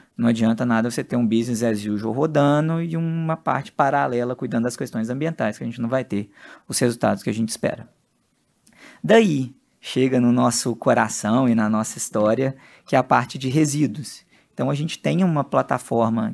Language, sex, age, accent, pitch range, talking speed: Portuguese, male, 20-39, Brazilian, 115-155 Hz, 185 wpm